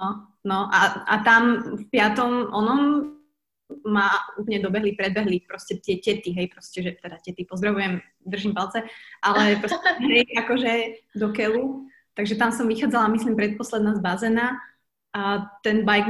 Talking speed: 150 wpm